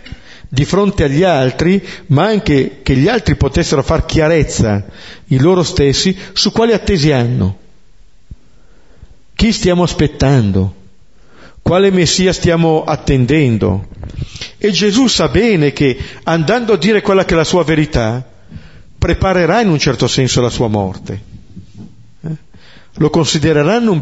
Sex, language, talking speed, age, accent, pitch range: male, Italian, 130 wpm, 50-69, native, 120-180 Hz